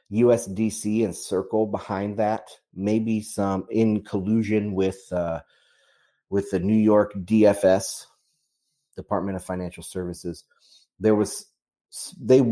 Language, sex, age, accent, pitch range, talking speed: English, male, 30-49, American, 95-120 Hz, 110 wpm